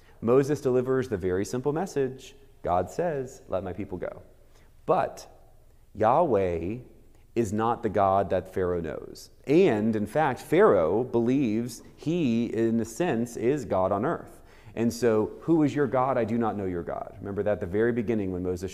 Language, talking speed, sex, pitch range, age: English, 175 wpm, male, 105-130 Hz, 30-49